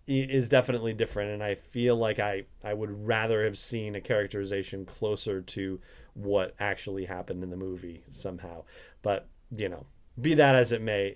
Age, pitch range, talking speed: 30-49, 105-140 Hz, 170 wpm